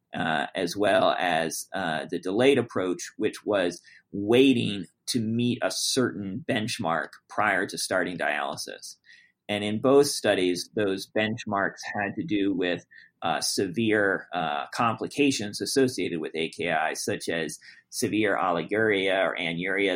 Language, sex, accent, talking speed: English, male, American, 130 wpm